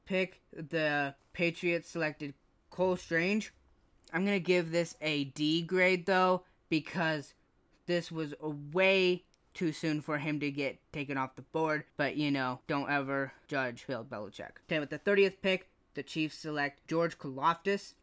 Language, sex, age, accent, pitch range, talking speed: English, female, 10-29, American, 130-160 Hz, 155 wpm